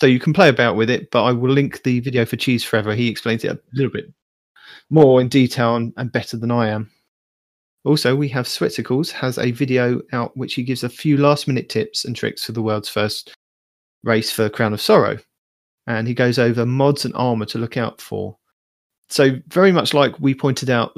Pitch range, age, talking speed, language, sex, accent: 110-125 Hz, 30-49, 215 wpm, English, male, British